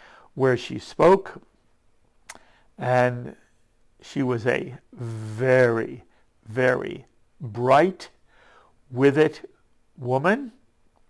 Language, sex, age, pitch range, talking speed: English, male, 60-79, 125-150 Hz, 70 wpm